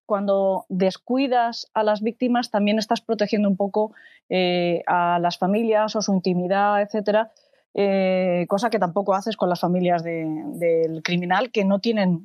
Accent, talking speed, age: Spanish, 155 wpm, 20-39